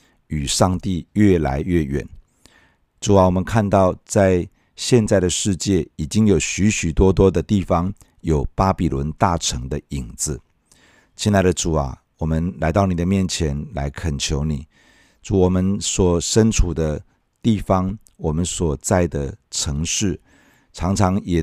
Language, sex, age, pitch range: Chinese, male, 50-69, 80-100 Hz